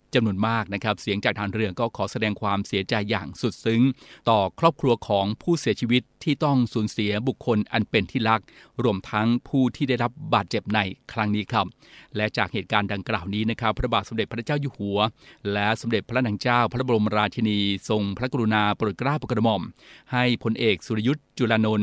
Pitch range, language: 105-125 Hz, Thai